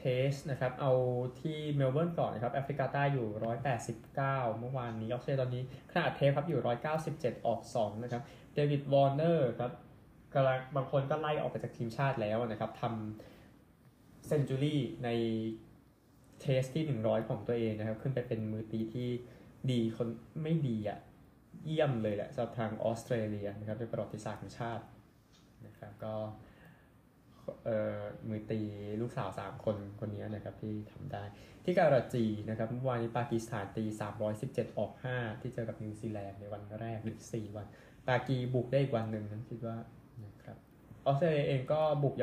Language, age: Thai, 20-39